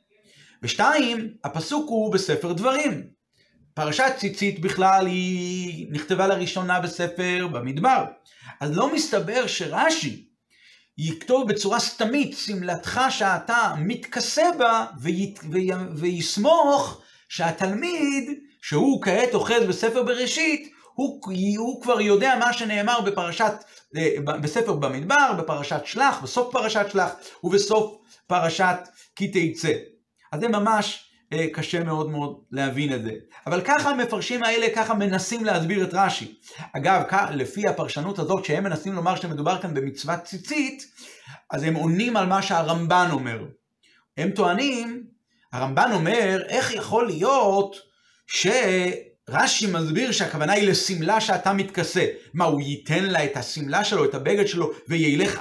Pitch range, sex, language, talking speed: 170-235 Hz, male, Hebrew, 120 wpm